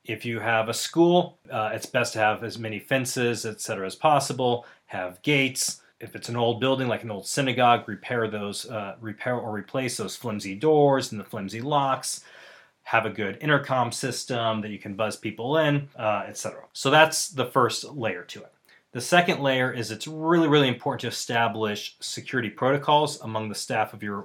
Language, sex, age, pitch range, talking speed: English, male, 30-49, 105-135 Hz, 195 wpm